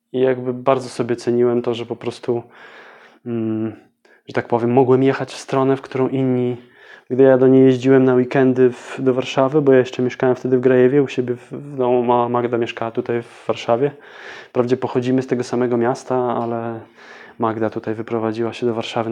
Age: 20-39